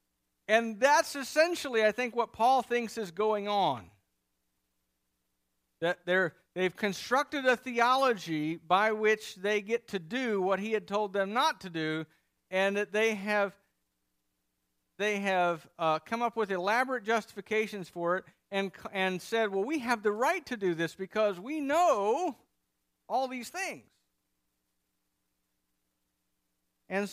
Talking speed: 135 wpm